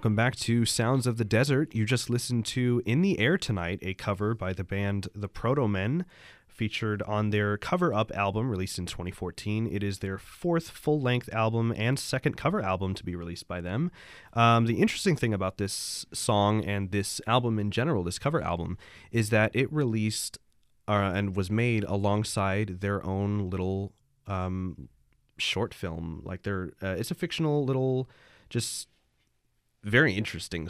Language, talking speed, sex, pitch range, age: English, 165 wpm, male, 95-110 Hz, 20-39